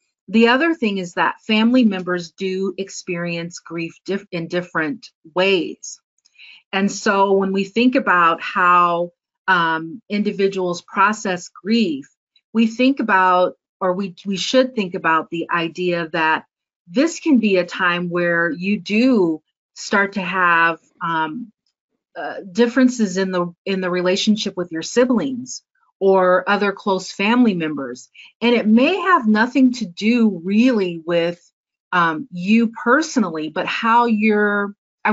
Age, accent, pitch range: 40-59, American, 175-225 Hz